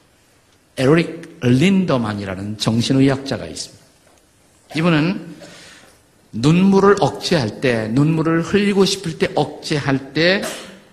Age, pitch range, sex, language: 50-69, 115-170 Hz, male, Korean